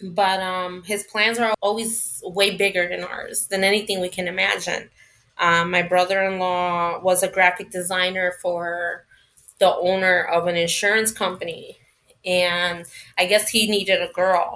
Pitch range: 175-195 Hz